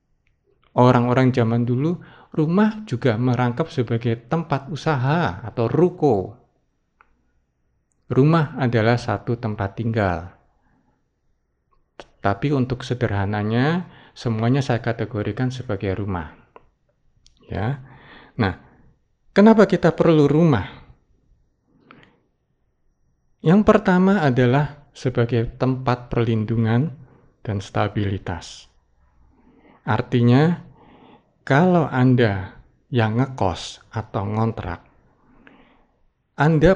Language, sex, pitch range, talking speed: Indonesian, male, 110-150 Hz, 75 wpm